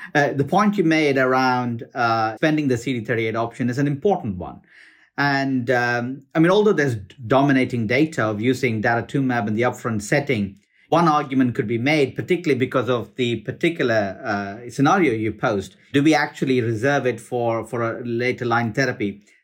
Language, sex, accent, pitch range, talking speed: English, male, Indian, 115-145 Hz, 170 wpm